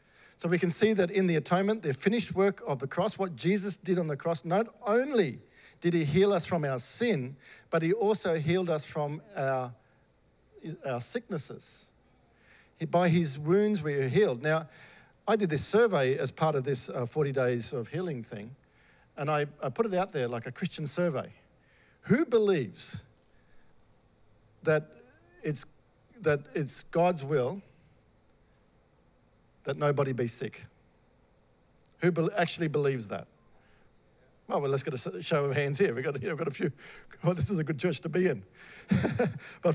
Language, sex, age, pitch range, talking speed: English, male, 50-69, 140-200 Hz, 170 wpm